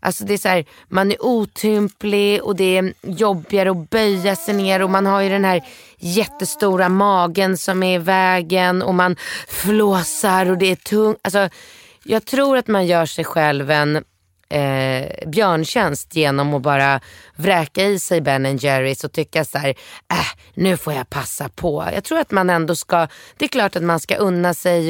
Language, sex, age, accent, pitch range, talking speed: Swedish, female, 20-39, native, 150-195 Hz, 190 wpm